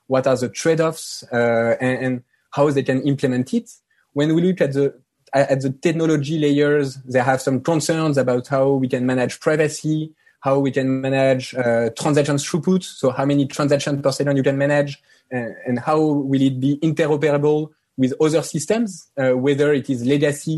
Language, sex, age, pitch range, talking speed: English, male, 20-39, 135-160 Hz, 180 wpm